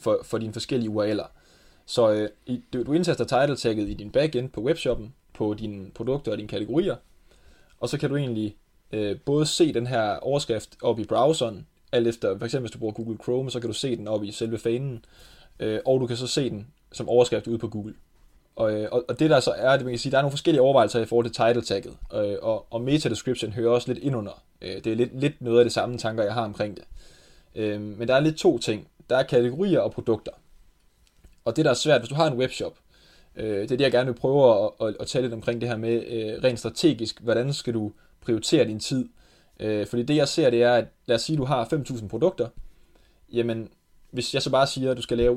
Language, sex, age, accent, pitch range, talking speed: Danish, male, 20-39, native, 110-130 Hz, 240 wpm